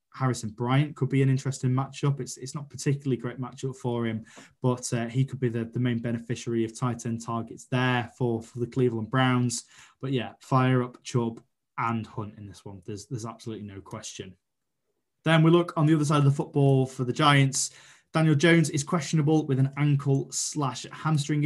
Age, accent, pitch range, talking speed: 20-39, British, 115-130 Hz, 200 wpm